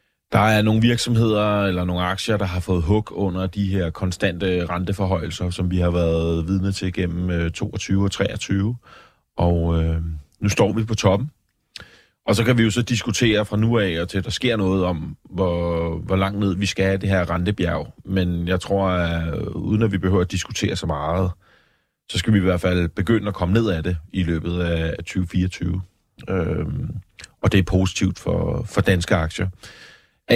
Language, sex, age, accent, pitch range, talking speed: Danish, male, 30-49, native, 90-105 Hz, 195 wpm